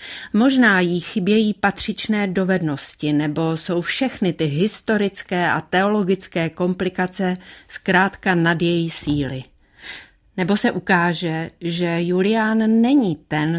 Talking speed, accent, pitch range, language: 105 wpm, native, 160-195 Hz, Czech